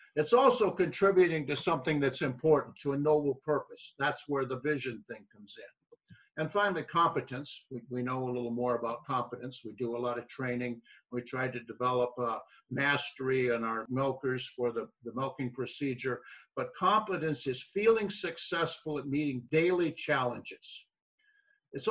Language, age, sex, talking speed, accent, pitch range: English, 60-79, male, 160 wpm, American, 130-165 Hz